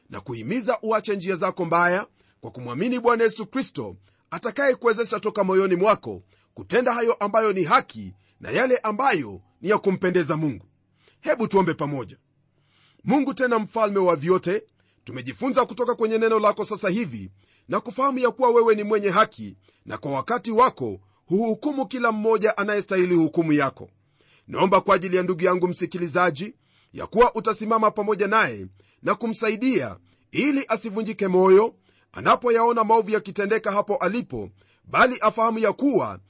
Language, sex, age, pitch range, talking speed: Swahili, male, 40-59, 170-230 Hz, 140 wpm